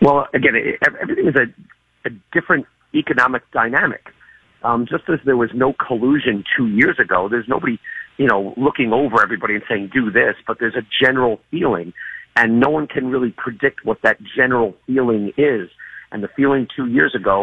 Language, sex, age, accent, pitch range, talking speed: English, male, 50-69, American, 105-125 Hz, 185 wpm